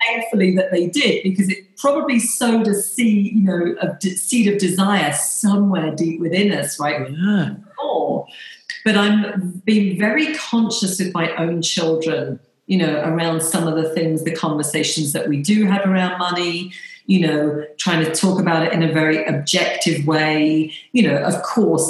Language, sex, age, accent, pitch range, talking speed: English, female, 40-59, British, 155-195 Hz, 165 wpm